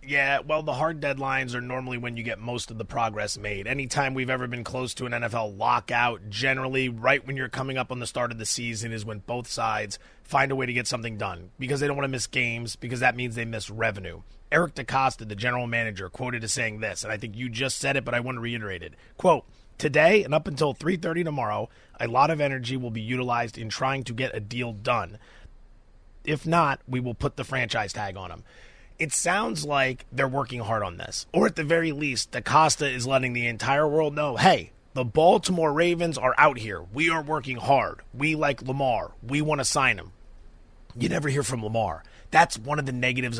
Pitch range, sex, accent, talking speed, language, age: 115-150 Hz, male, American, 225 wpm, English, 30-49